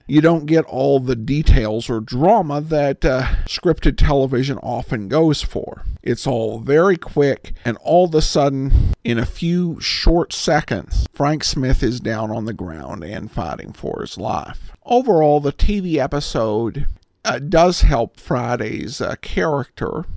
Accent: American